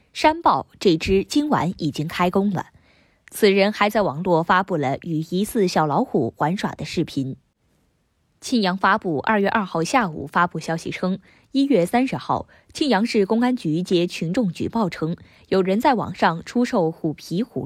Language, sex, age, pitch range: Chinese, female, 20-39, 170-230 Hz